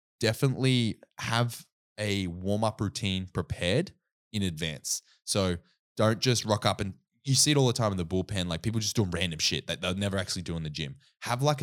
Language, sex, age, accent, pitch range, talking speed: English, male, 20-39, Australian, 90-110 Hz, 205 wpm